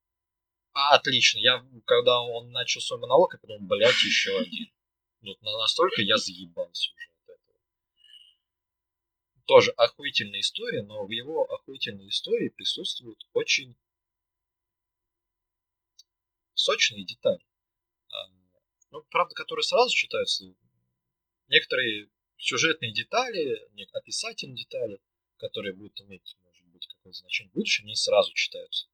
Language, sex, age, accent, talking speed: Russian, male, 20-39, native, 105 wpm